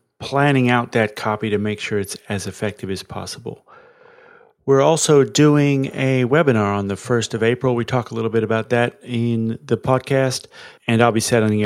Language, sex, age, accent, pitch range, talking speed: English, male, 40-59, American, 105-130 Hz, 185 wpm